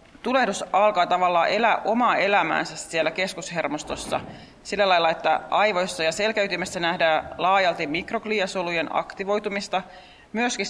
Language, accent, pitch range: Finnish, native, 165-205 Hz